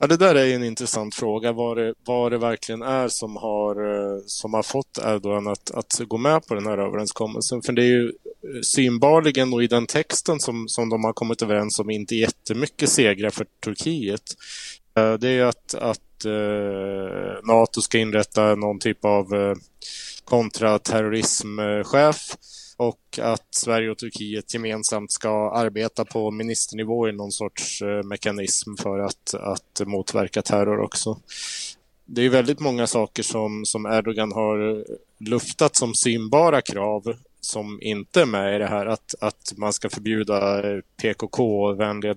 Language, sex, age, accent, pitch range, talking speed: Swedish, male, 20-39, Norwegian, 105-120 Hz, 155 wpm